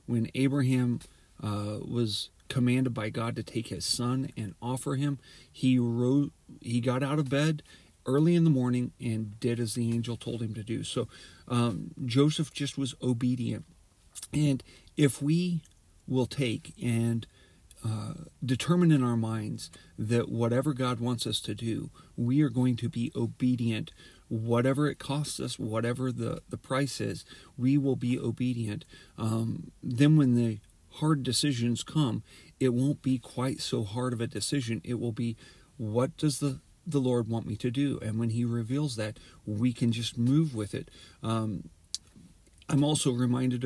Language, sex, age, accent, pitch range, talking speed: English, male, 40-59, American, 115-140 Hz, 165 wpm